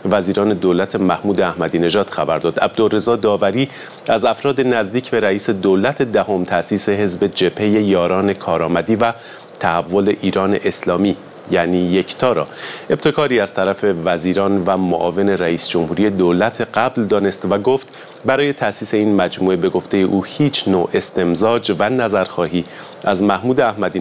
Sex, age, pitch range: male, 30-49, 95-115 Hz